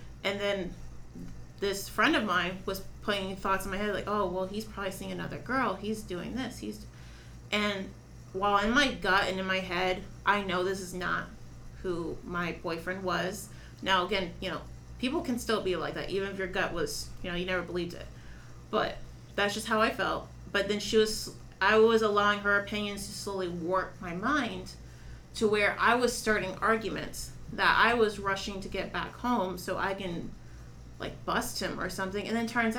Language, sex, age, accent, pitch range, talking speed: English, female, 30-49, American, 180-210 Hz, 200 wpm